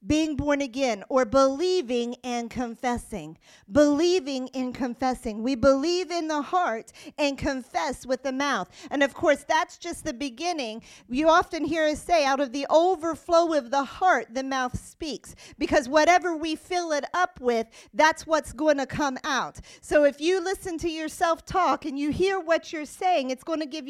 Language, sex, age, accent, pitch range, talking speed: English, female, 50-69, American, 250-325 Hz, 180 wpm